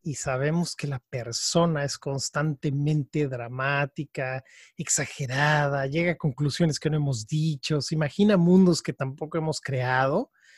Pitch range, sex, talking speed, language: 145-185 Hz, male, 130 wpm, Spanish